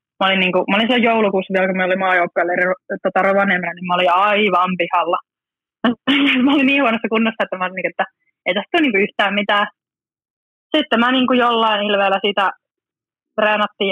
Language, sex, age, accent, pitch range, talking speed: Finnish, female, 20-39, native, 185-230 Hz, 170 wpm